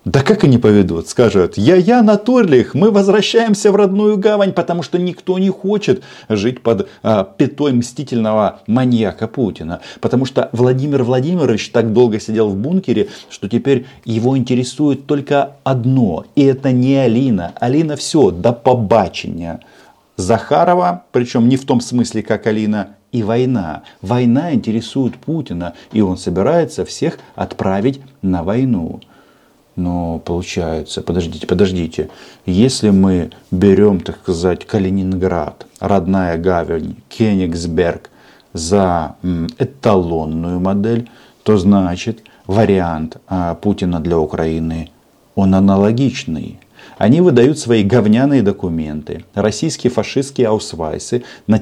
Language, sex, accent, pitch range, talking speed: Russian, male, native, 95-130 Hz, 115 wpm